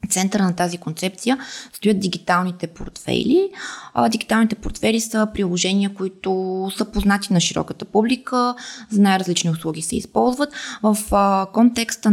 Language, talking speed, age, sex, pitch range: Bulgarian, 120 wpm, 20-39, female, 170-210 Hz